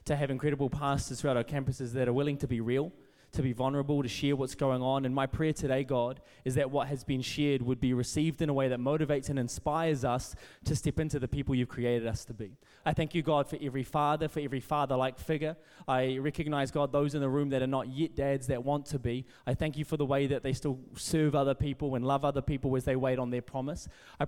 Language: English